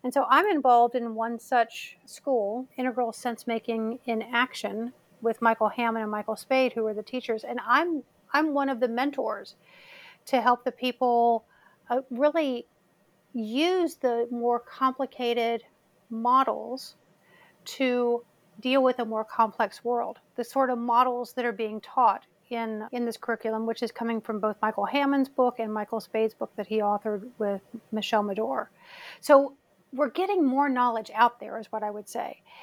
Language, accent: English, American